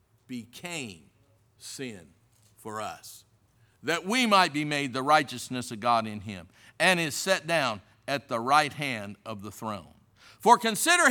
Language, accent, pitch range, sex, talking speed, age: English, American, 110-150 Hz, male, 150 wpm, 60-79